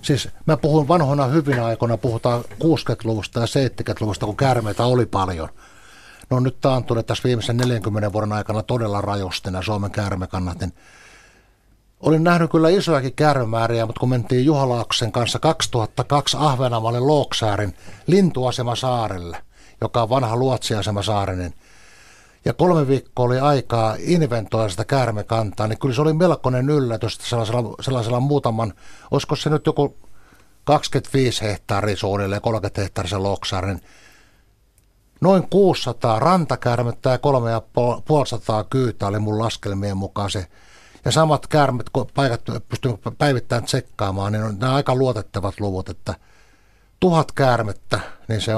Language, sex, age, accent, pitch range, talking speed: Finnish, male, 60-79, native, 105-135 Hz, 130 wpm